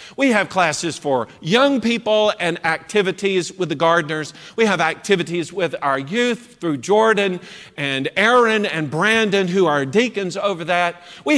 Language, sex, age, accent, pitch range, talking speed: English, male, 50-69, American, 175-240 Hz, 155 wpm